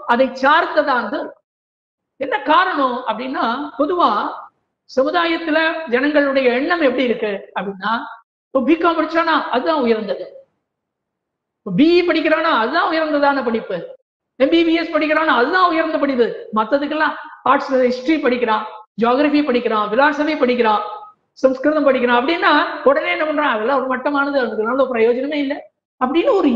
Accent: native